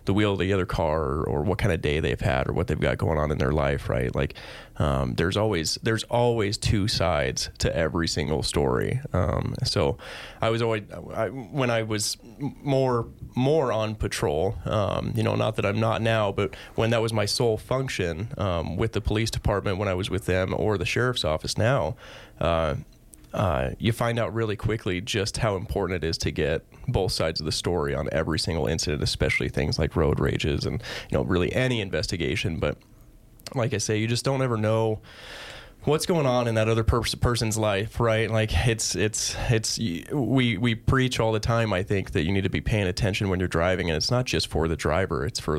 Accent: American